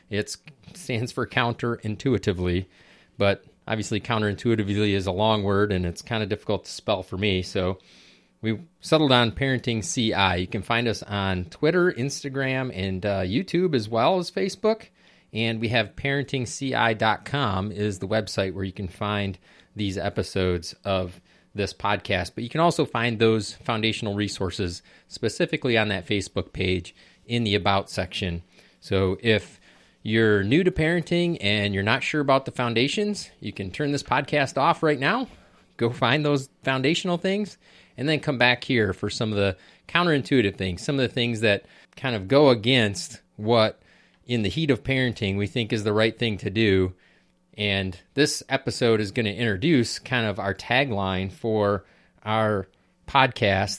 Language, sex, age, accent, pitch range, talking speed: English, male, 30-49, American, 100-130 Hz, 165 wpm